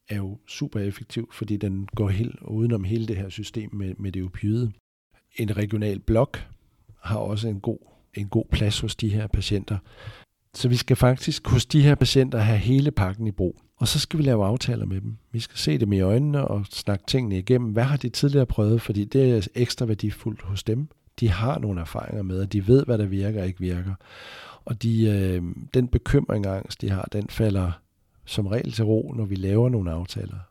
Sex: male